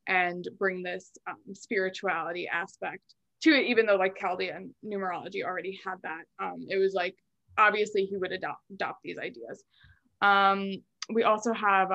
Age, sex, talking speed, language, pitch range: 20-39, female, 155 wpm, English, 185-205 Hz